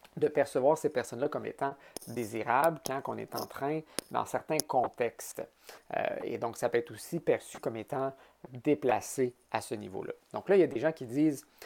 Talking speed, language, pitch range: 195 wpm, French, 120-175 Hz